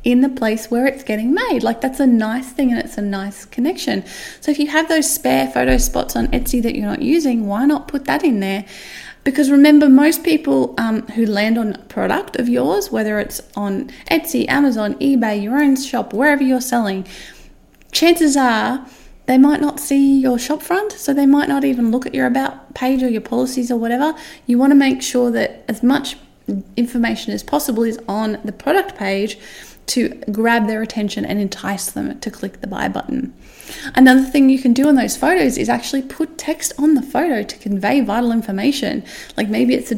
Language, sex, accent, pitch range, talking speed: English, female, Australian, 215-275 Hz, 205 wpm